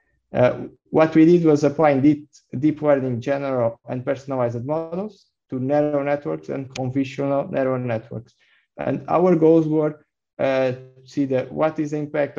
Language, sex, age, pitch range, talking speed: English, male, 20-39, 130-150 Hz, 155 wpm